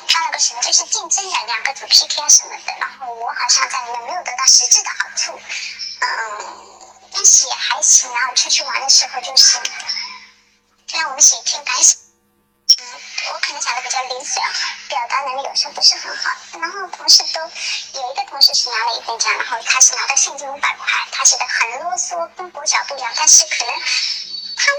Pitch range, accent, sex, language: 245-360 Hz, native, male, Chinese